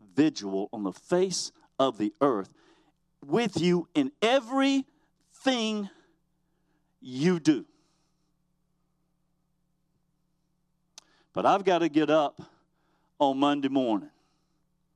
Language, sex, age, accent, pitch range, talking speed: English, male, 50-69, American, 120-170 Hz, 90 wpm